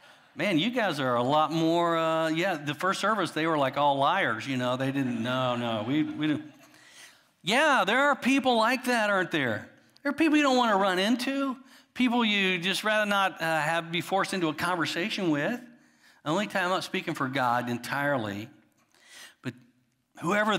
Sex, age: male, 50-69